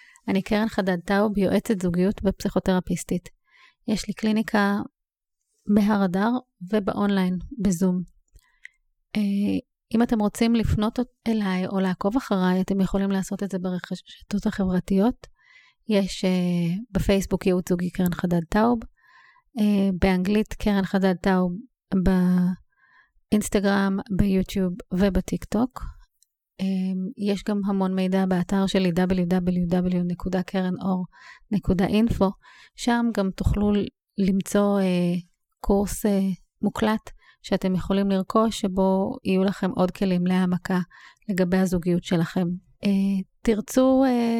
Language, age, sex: English, 30-49, female